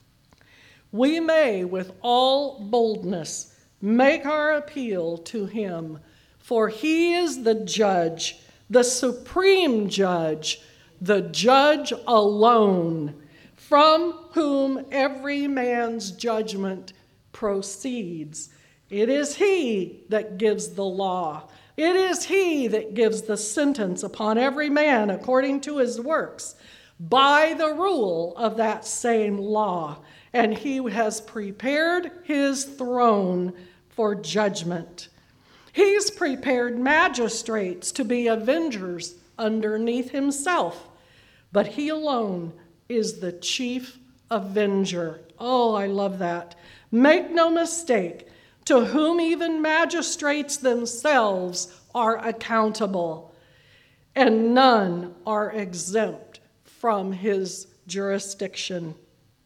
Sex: female